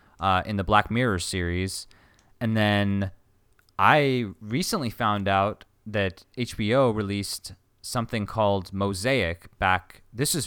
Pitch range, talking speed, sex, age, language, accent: 95-125 Hz, 120 wpm, male, 20-39, English, American